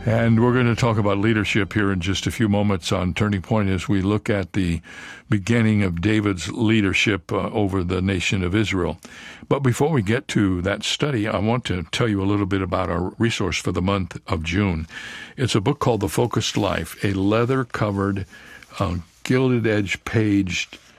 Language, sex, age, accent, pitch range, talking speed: English, male, 60-79, American, 95-115 Hz, 185 wpm